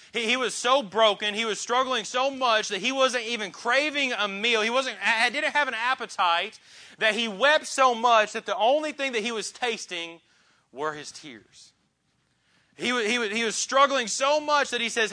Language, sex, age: English, male, 30-49